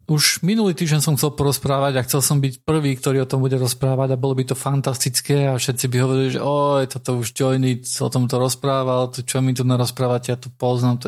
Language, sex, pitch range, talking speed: Slovak, male, 125-135 Hz, 235 wpm